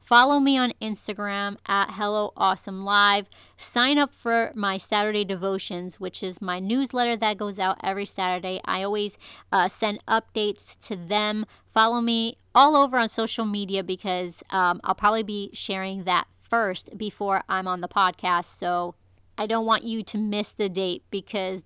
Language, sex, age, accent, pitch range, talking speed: English, female, 30-49, American, 190-215 Hz, 165 wpm